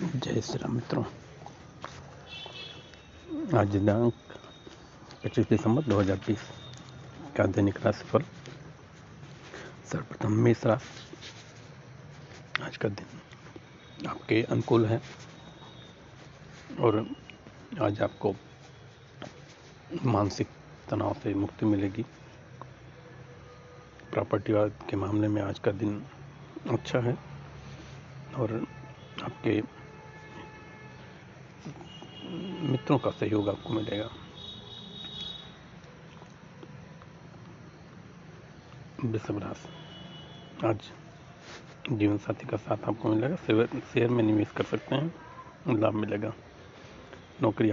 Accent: native